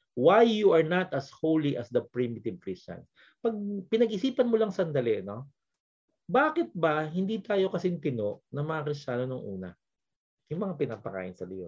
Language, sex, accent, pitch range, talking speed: English, male, Filipino, 135-190 Hz, 160 wpm